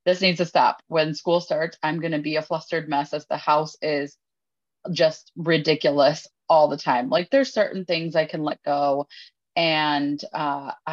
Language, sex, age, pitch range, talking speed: English, female, 20-39, 150-180 Hz, 180 wpm